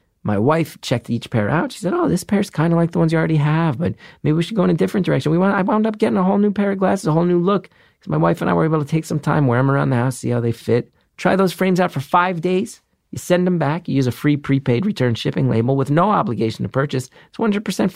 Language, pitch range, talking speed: English, 125-175 Hz, 300 wpm